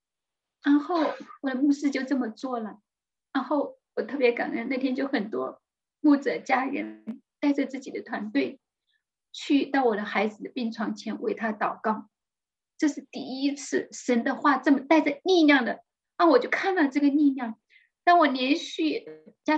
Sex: female